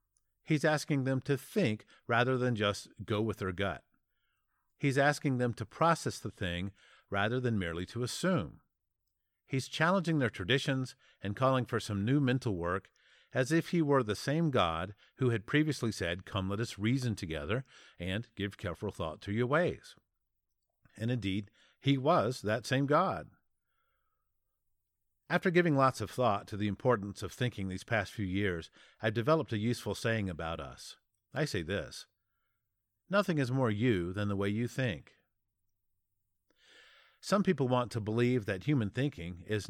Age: 50-69